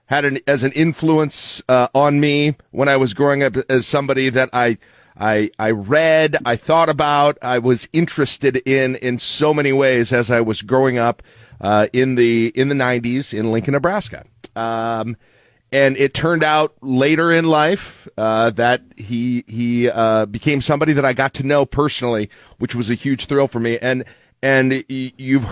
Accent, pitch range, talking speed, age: American, 115-140 Hz, 180 wpm, 40-59